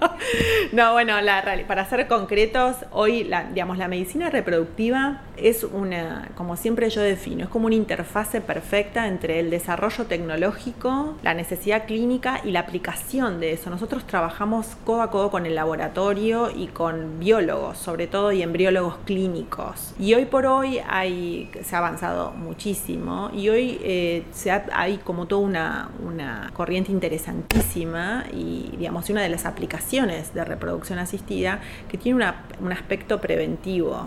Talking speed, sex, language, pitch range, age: 150 wpm, female, Spanish, 180-230 Hz, 30-49